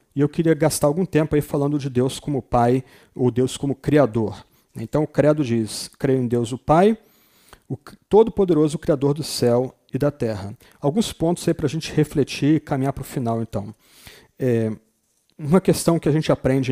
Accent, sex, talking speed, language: Brazilian, male, 195 wpm, Portuguese